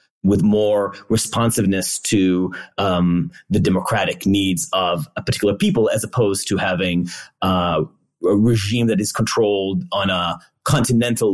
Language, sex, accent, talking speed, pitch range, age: English, male, American, 130 wpm, 95-130 Hz, 30-49